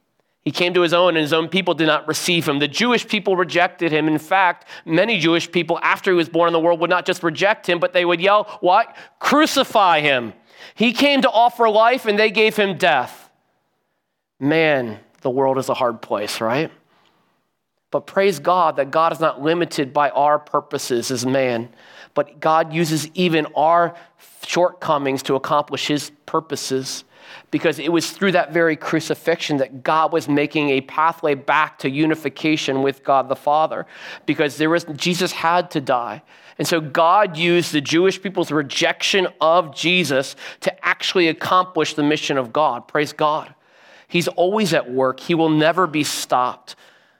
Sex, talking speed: male, 175 wpm